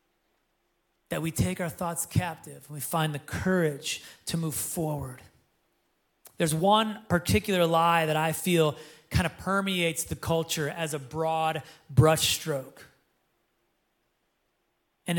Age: 30-49